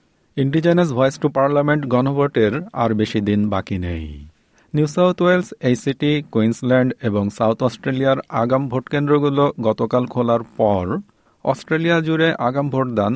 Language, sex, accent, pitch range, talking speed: Bengali, male, native, 105-145 Hz, 85 wpm